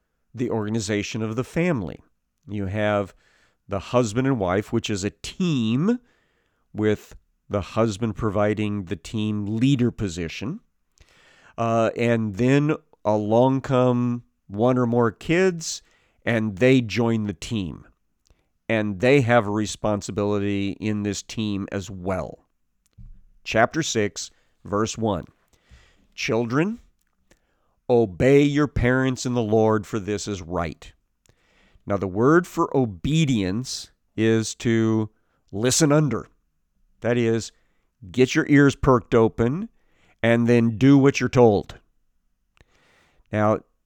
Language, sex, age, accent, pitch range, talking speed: English, male, 40-59, American, 105-125 Hz, 115 wpm